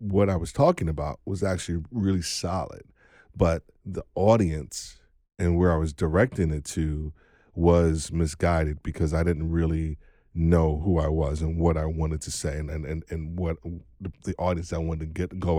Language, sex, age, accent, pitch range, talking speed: English, male, 40-59, American, 80-90 Hz, 175 wpm